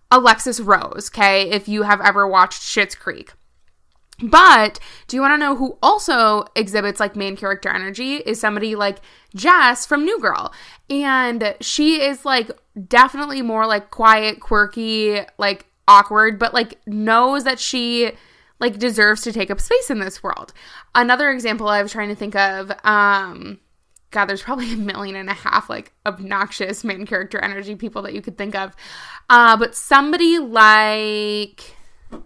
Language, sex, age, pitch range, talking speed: English, female, 20-39, 200-255 Hz, 160 wpm